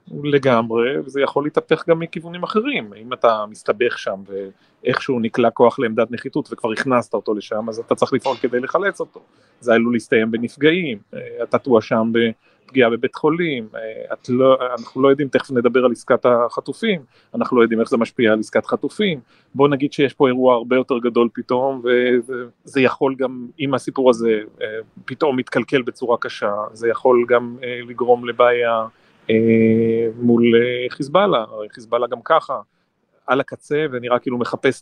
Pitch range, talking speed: 120-145 Hz, 150 wpm